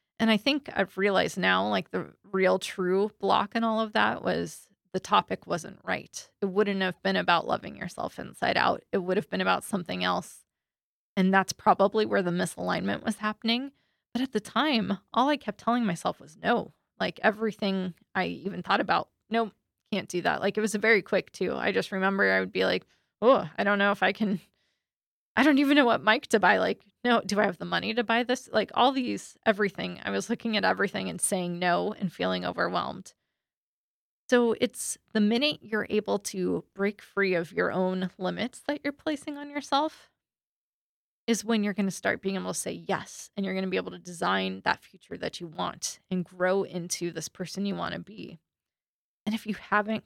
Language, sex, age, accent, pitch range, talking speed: English, female, 20-39, American, 185-225 Hz, 205 wpm